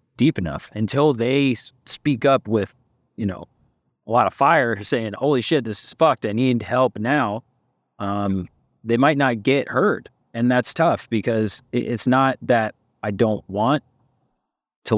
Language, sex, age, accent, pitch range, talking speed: English, male, 30-49, American, 100-125 Hz, 160 wpm